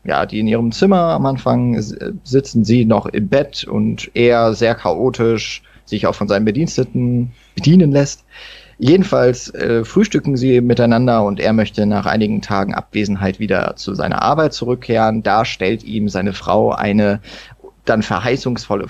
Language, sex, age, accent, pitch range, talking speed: German, male, 30-49, German, 105-130 Hz, 150 wpm